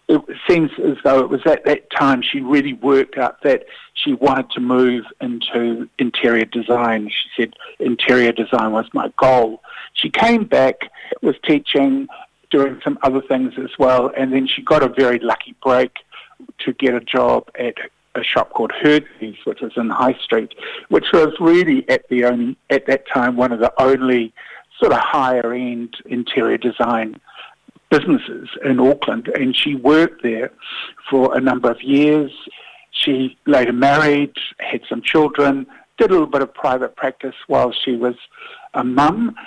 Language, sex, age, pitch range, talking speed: English, male, 50-69, 125-155 Hz, 165 wpm